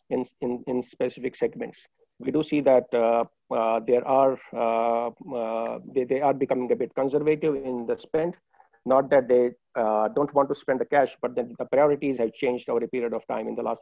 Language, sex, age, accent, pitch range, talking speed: English, male, 50-69, Indian, 120-135 Hz, 210 wpm